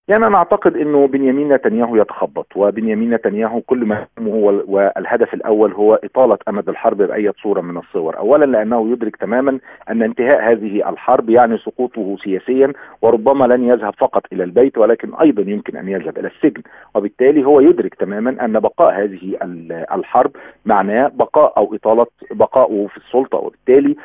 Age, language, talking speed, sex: 40-59, Arabic, 155 wpm, male